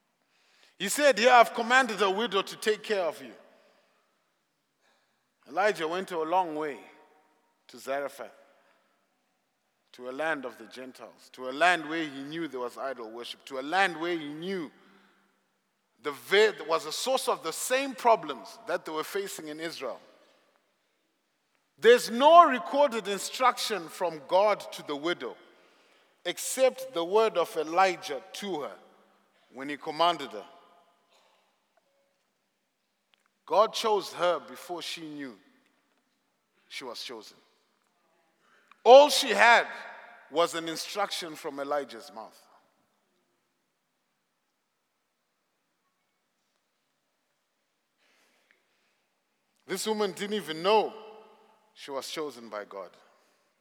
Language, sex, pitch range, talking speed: English, male, 150-220 Hz, 115 wpm